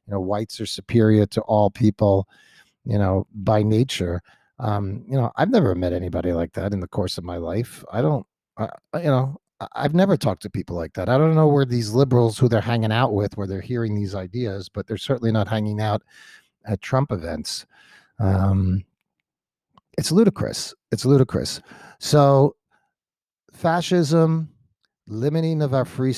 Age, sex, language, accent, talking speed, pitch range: 40-59, male, English, American, 170 wpm, 100-130 Hz